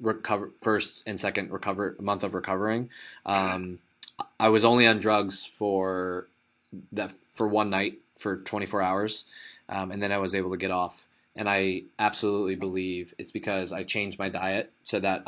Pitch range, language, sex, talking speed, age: 95-105 Hz, English, male, 170 wpm, 20-39